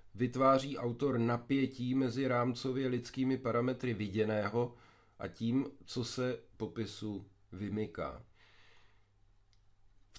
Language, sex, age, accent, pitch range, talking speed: Czech, male, 50-69, native, 105-130 Hz, 90 wpm